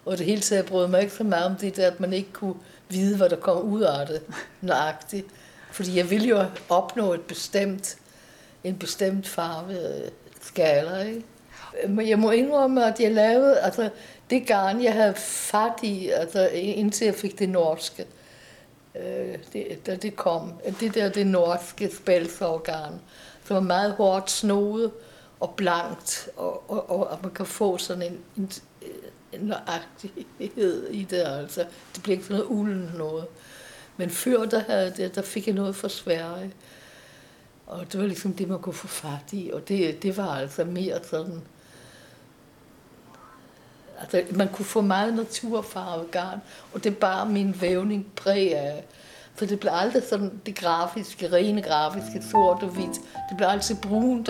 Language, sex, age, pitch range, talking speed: Danish, female, 60-79, 175-215 Hz, 165 wpm